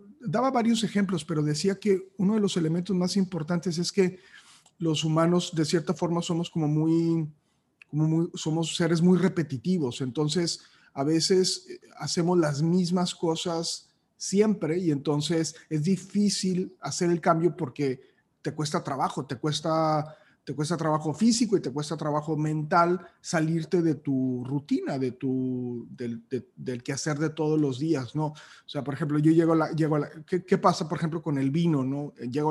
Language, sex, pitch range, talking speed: Spanish, male, 145-180 Hz, 175 wpm